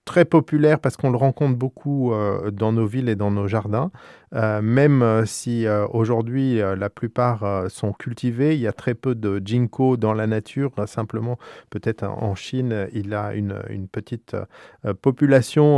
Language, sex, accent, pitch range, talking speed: French, male, French, 115-145 Hz, 180 wpm